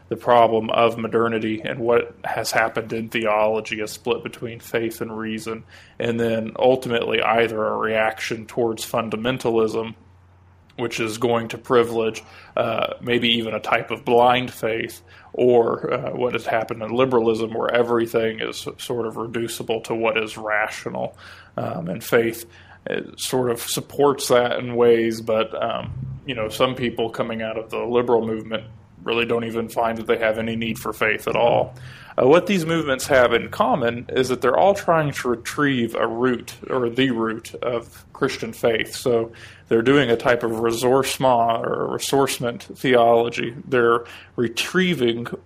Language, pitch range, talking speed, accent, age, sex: English, 110-125 Hz, 160 wpm, American, 20-39, male